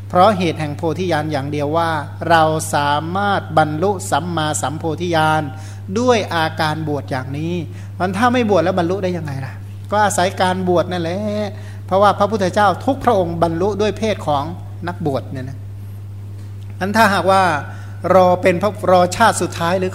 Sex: male